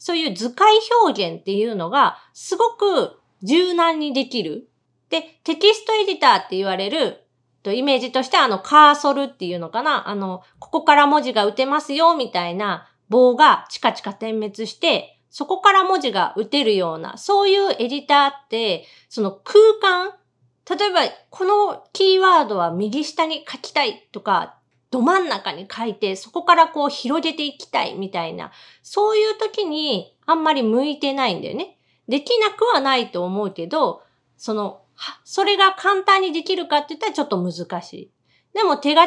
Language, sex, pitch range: Japanese, female, 215-360 Hz